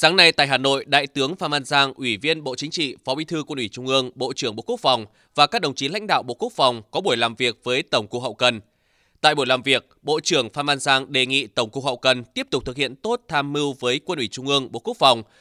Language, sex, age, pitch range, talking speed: Vietnamese, male, 20-39, 125-160 Hz, 290 wpm